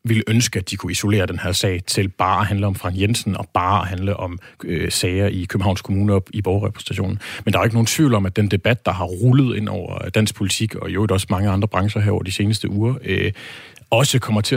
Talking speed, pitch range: 250 wpm, 100-120 Hz